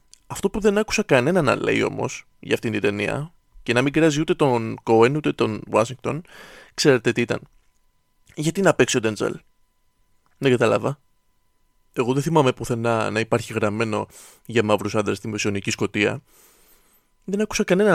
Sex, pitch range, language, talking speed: male, 110-145 Hz, Greek, 160 wpm